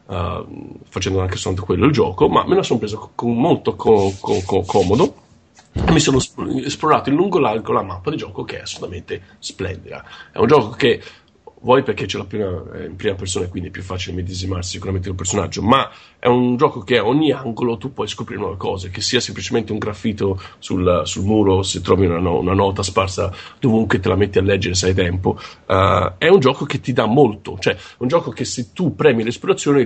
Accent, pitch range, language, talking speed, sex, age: native, 95-120 Hz, Italian, 220 wpm, male, 40-59